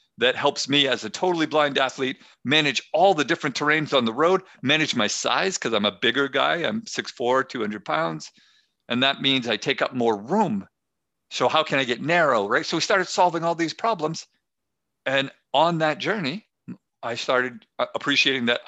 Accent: American